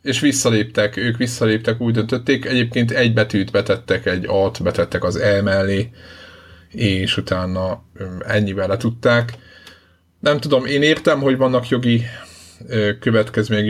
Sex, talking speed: male, 125 wpm